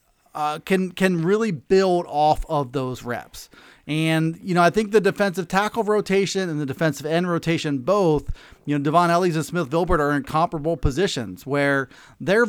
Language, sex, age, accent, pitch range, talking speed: English, male, 30-49, American, 150-195 Hz, 175 wpm